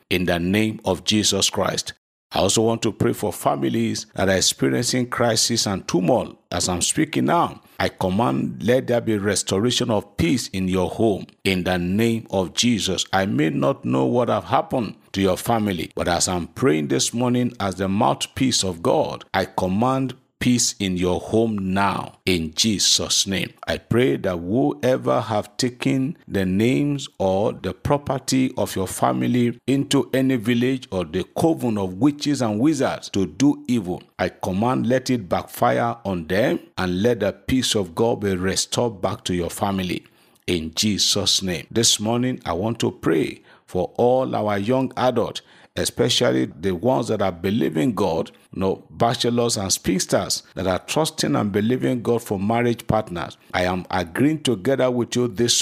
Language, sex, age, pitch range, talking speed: English, male, 50-69, 95-125 Hz, 170 wpm